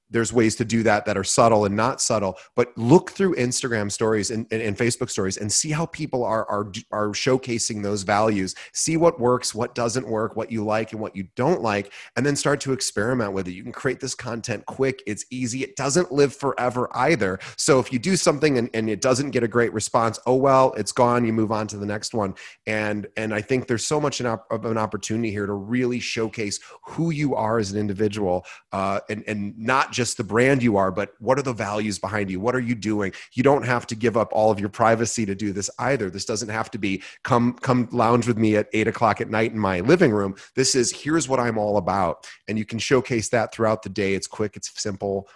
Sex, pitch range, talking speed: male, 105-125 Hz, 245 wpm